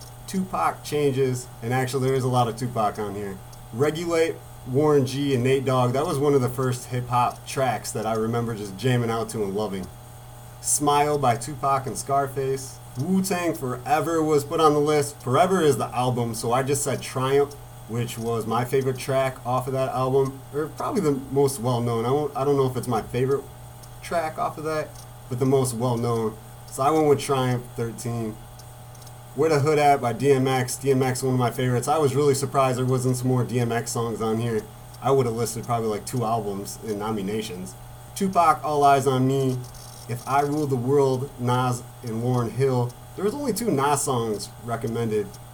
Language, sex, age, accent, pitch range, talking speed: English, male, 30-49, American, 120-140 Hz, 190 wpm